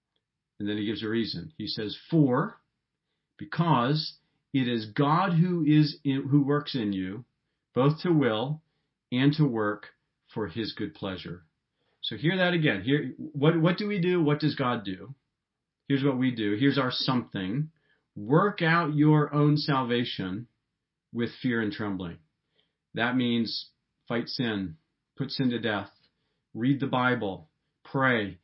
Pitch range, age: 115-155 Hz, 40-59